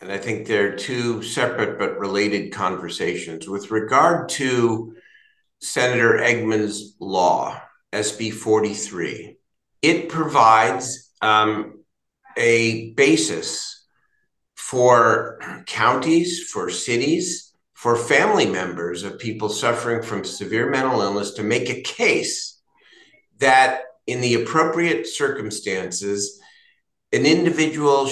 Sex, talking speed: male, 100 wpm